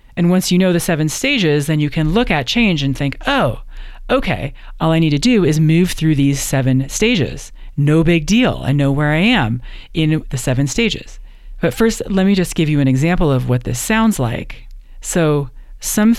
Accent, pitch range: American, 135-175 Hz